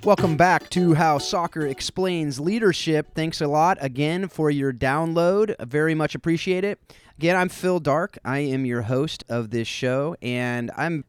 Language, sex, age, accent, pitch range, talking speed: English, male, 30-49, American, 110-150 Hz, 170 wpm